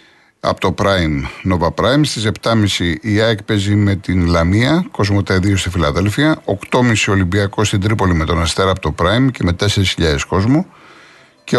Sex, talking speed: male, 165 wpm